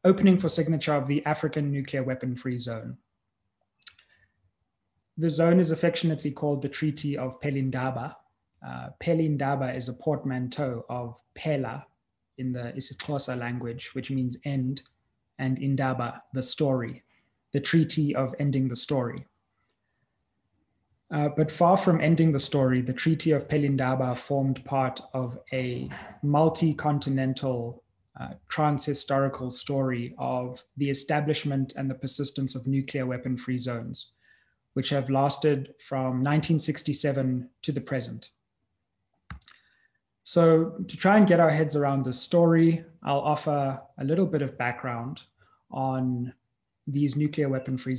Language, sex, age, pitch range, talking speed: English, male, 20-39, 125-150 Hz, 125 wpm